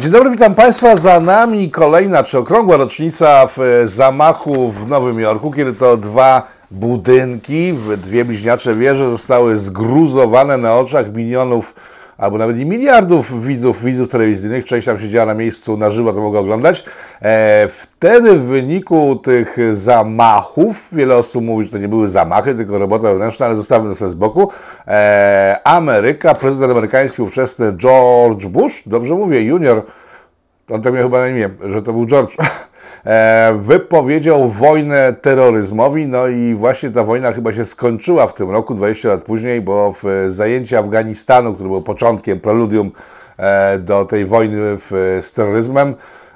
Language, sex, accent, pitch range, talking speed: Polish, male, native, 110-145 Hz, 150 wpm